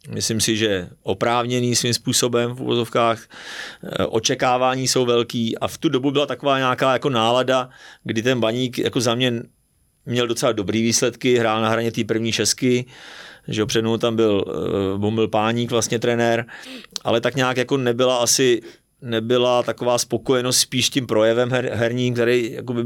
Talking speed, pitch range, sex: 160 wpm, 115-125 Hz, male